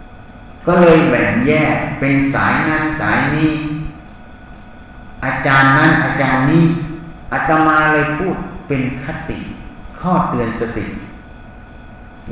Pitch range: 130-170 Hz